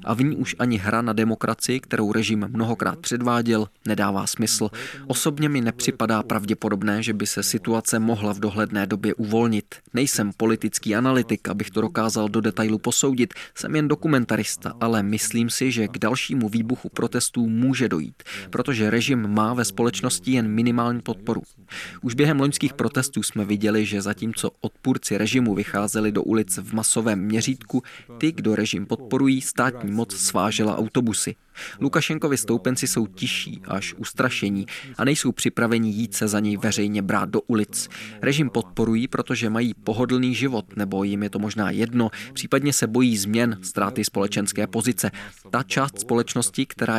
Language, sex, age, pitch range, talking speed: Czech, male, 20-39, 105-125 Hz, 155 wpm